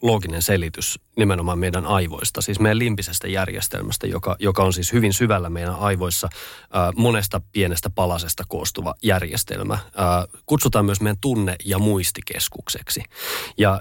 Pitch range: 90-115 Hz